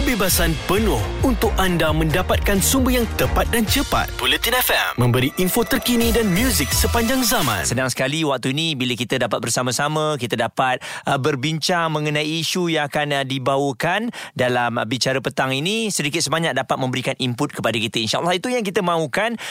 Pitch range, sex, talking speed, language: 125-165 Hz, male, 170 wpm, Malay